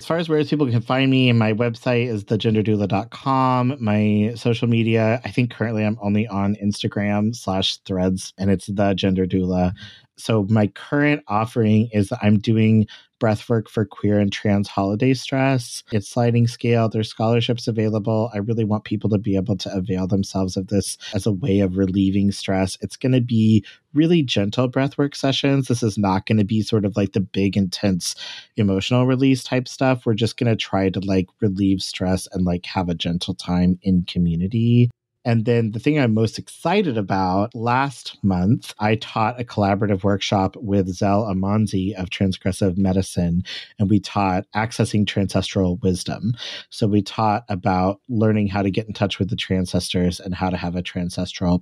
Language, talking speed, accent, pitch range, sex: English, 175 wpm, American, 95-120 Hz, male